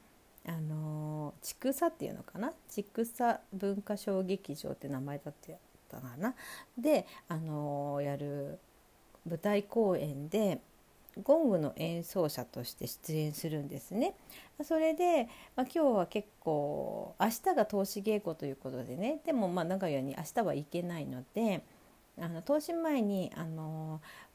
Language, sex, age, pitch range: Japanese, female, 40-59, 150-225 Hz